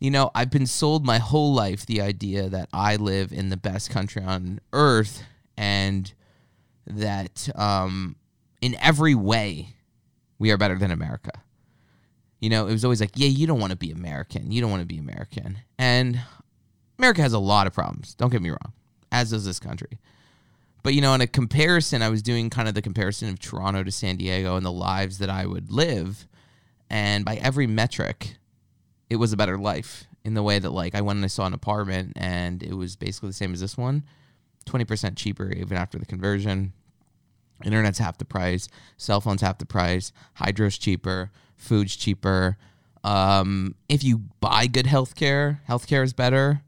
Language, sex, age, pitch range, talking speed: English, male, 20-39, 95-125 Hz, 190 wpm